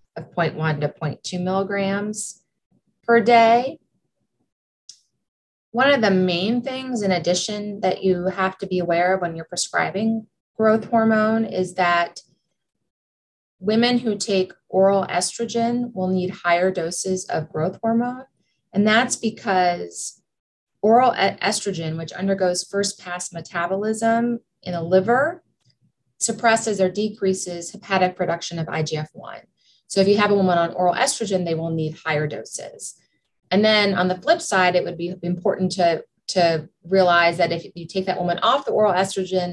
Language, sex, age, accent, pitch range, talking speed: English, female, 30-49, American, 170-210 Hz, 145 wpm